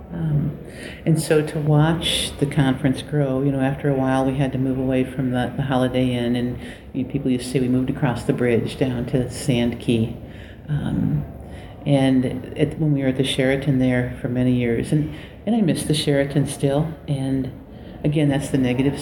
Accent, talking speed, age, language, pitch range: American, 190 wpm, 50-69, English, 125-145 Hz